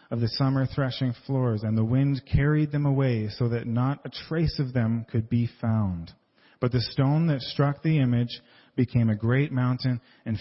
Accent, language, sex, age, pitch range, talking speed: American, English, male, 40-59, 120-145 Hz, 190 wpm